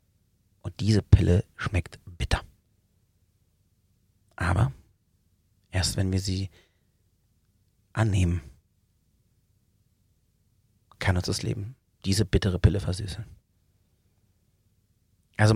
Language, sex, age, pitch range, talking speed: German, male, 40-59, 95-110 Hz, 75 wpm